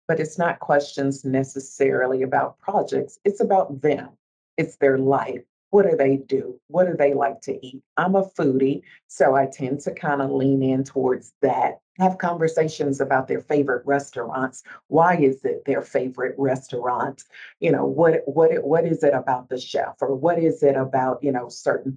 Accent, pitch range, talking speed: American, 135-165 Hz, 180 wpm